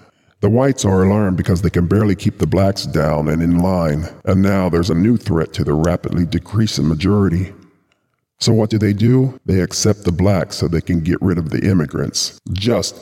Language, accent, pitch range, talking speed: English, American, 85-100 Hz, 205 wpm